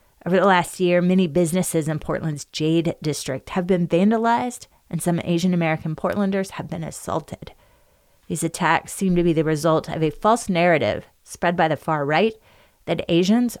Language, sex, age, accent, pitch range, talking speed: English, female, 30-49, American, 160-195 Hz, 170 wpm